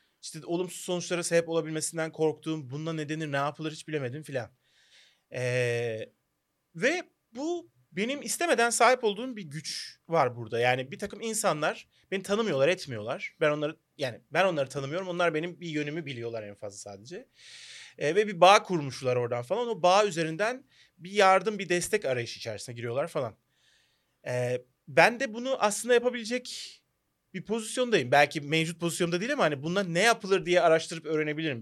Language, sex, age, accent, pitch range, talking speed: Turkish, male, 30-49, native, 135-200 Hz, 155 wpm